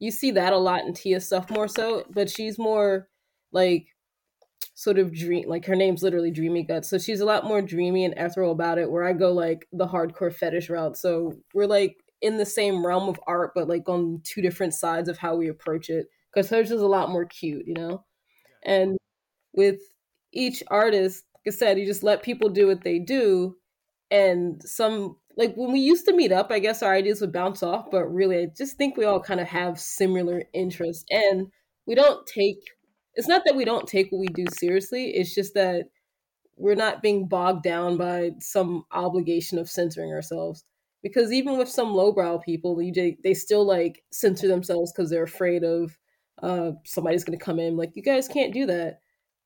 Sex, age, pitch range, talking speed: female, 20-39, 175-205 Hz, 205 wpm